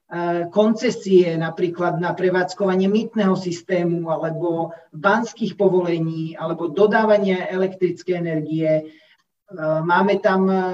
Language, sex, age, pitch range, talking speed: Slovak, male, 40-59, 185-215 Hz, 85 wpm